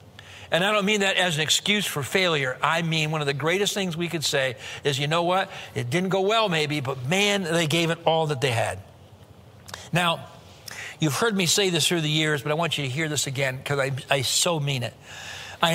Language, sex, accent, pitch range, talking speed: English, male, American, 140-195 Hz, 235 wpm